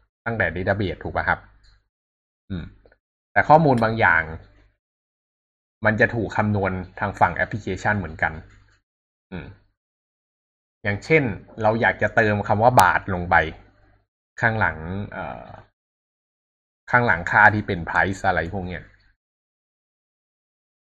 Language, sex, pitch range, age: Thai, male, 90-110 Hz, 20-39